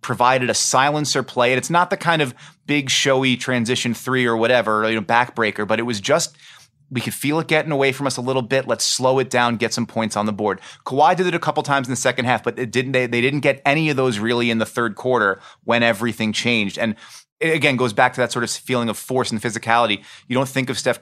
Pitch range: 110-130 Hz